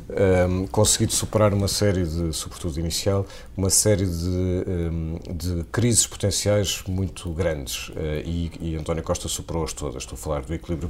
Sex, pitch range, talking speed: male, 80-100 Hz, 160 wpm